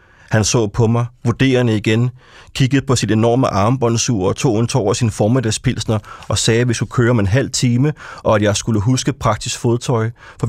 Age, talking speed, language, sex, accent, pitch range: 30-49, 200 wpm, Danish, male, native, 105-125 Hz